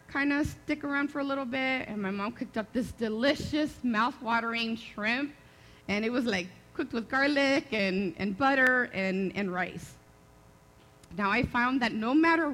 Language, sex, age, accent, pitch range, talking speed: English, female, 30-49, American, 215-295 Hz, 170 wpm